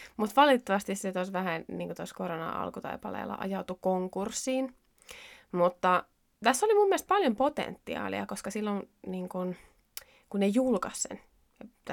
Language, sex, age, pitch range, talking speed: Finnish, female, 20-39, 180-235 Hz, 110 wpm